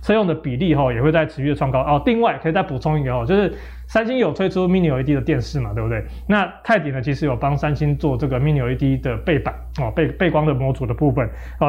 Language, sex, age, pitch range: Chinese, male, 20-39, 145-190 Hz